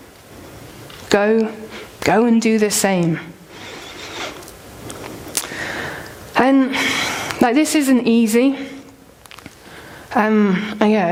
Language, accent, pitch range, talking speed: English, British, 195-255 Hz, 70 wpm